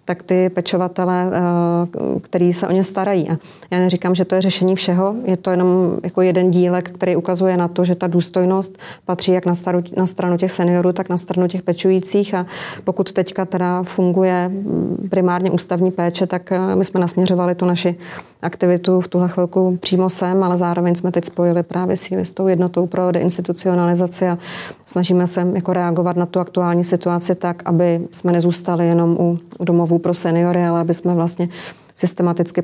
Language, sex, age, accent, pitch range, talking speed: Czech, female, 30-49, native, 175-185 Hz, 175 wpm